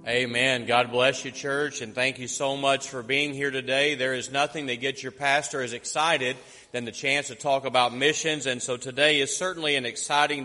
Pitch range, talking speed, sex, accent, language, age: 130-150 Hz, 215 wpm, male, American, English, 30-49